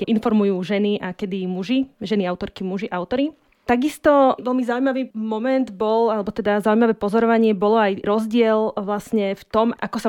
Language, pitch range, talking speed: Slovak, 200-225 Hz, 155 wpm